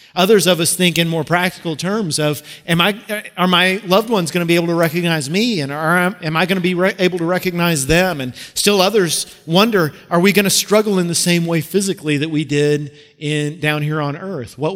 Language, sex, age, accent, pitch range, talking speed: English, male, 40-59, American, 150-180 Hz, 230 wpm